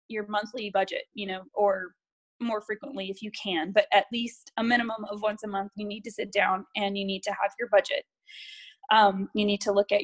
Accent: American